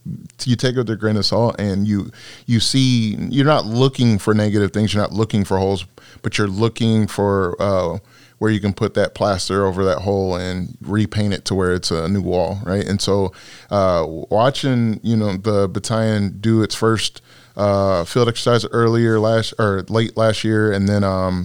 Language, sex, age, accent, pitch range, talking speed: English, male, 20-39, American, 100-115 Hz, 195 wpm